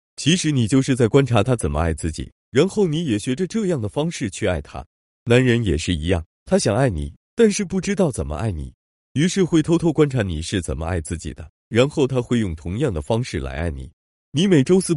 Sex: male